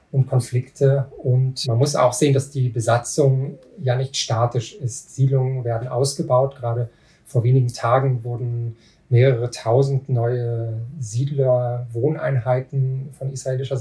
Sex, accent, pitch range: male, German, 120-140 Hz